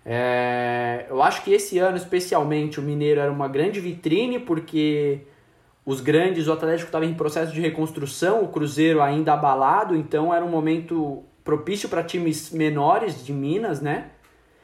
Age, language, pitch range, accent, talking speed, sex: 20-39, Portuguese, 140-170 Hz, Brazilian, 155 wpm, male